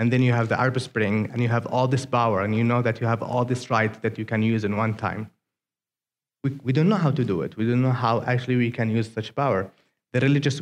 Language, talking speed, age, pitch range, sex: English, 275 wpm, 30-49, 115-135 Hz, male